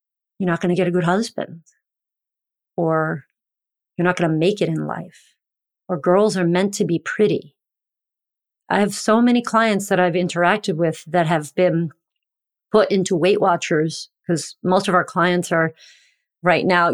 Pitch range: 170-205 Hz